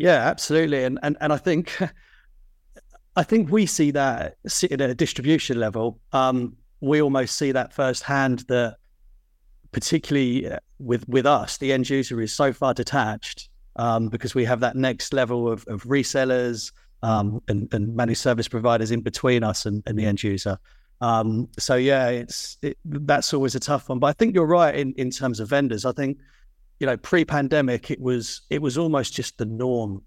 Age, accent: 30-49, British